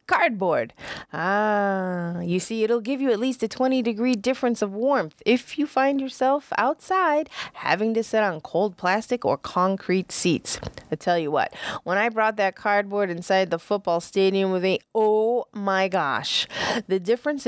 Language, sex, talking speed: English, female, 170 wpm